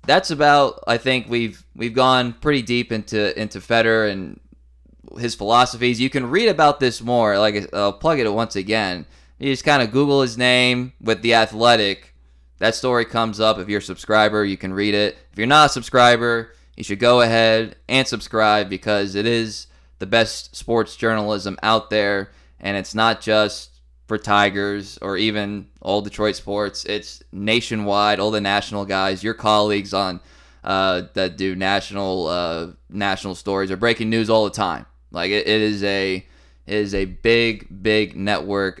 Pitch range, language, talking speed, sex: 95-115 Hz, English, 175 wpm, male